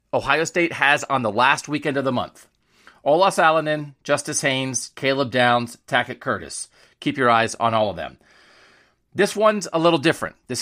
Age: 40-59